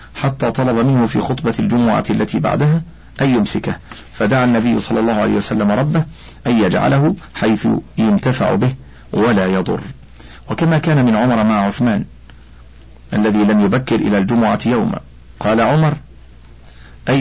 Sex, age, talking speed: male, 50-69, 135 wpm